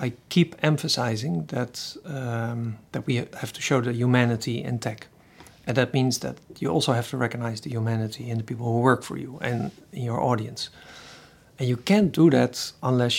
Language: English